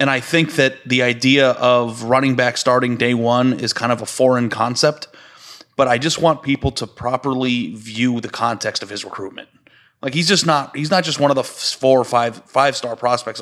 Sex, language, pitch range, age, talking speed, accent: male, English, 115-130 Hz, 30-49, 210 wpm, American